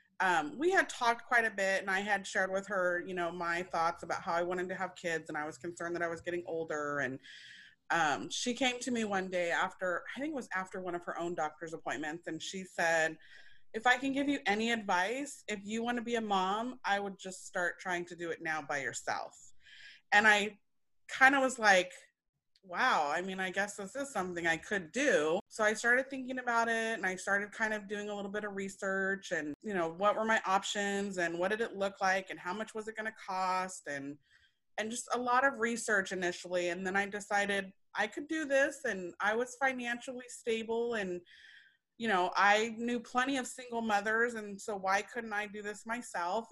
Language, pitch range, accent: English, 180-230 Hz, American